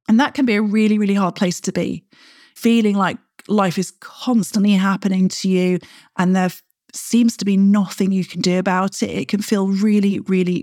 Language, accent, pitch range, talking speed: English, British, 195-240 Hz, 200 wpm